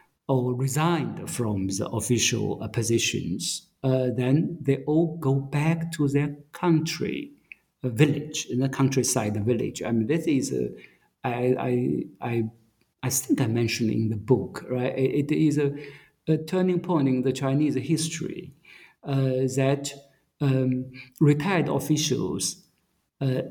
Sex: male